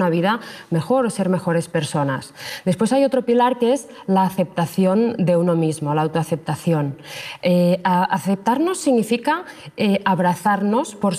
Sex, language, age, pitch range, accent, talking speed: female, Spanish, 20-39, 175-215 Hz, Spanish, 145 wpm